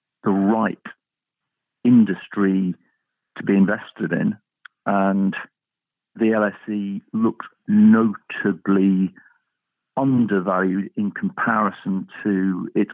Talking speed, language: 80 wpm, English